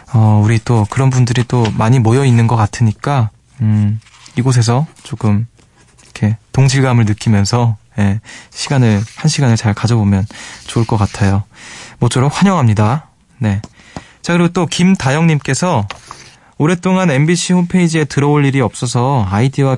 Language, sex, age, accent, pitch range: Korean, male, 20-39, native, 115-150 Hz